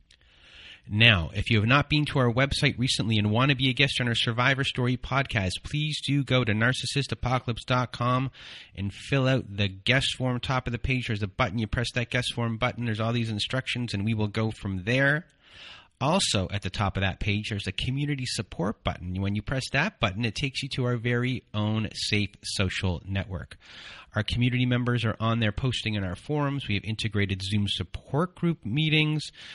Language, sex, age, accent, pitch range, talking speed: English, male, 30-49, American, 100-130 Hz, 200 wpm